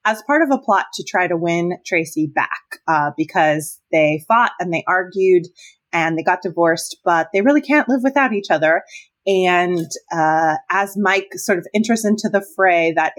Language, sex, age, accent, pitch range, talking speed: English, female, 20-39, American, 175-230 Hz, 185 wpm